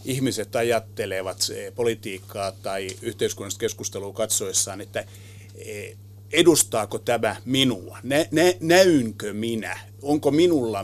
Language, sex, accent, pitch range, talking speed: Finnish, male, native, 100-130 Hz, 85 wpm